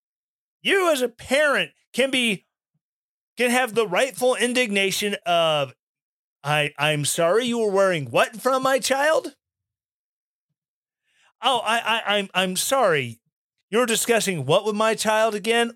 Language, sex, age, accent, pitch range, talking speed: English, male, 40-59, American, 155-230 Hz, 135 wpm